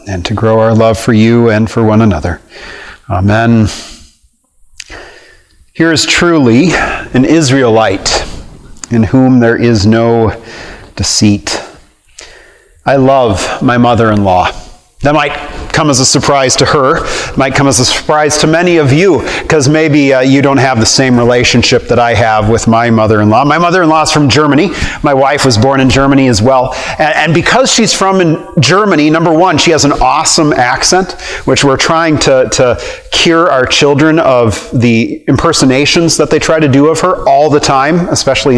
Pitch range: 120-160 Hz